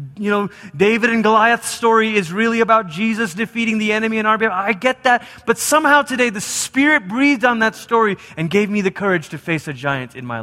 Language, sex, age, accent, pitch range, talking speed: English, male, 30-49, American, 125-205 Hz, 225 wpm